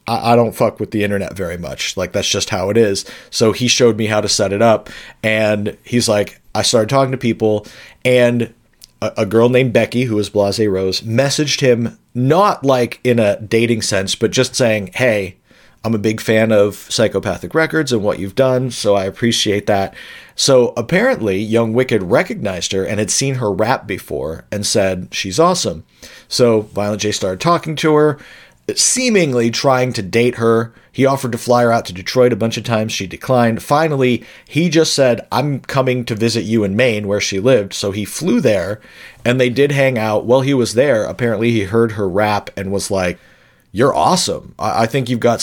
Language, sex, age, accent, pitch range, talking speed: English, male, 40-59, American, 105-130 Hz, 200 wpm